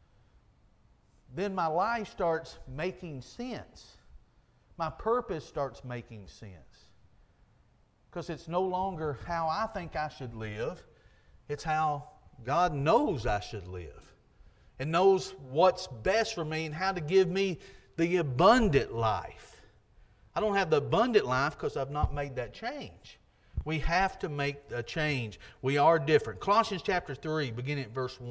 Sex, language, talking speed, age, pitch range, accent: male, English, 145 wpm, 40-59, 145-205 Hz, American